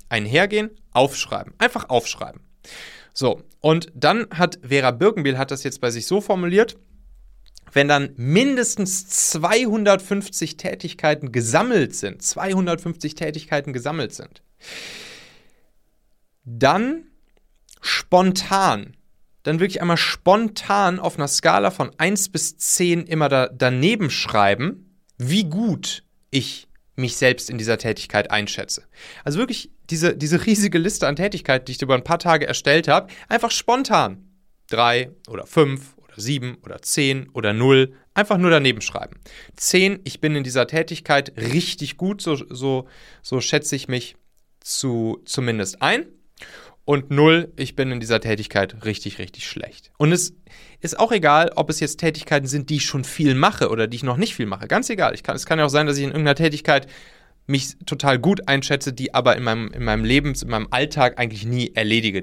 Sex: male